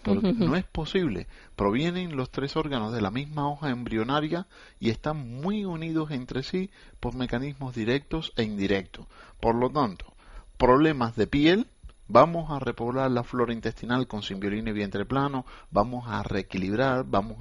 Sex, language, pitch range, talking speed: male, Spanish, 100-135 Hz, 150 wpm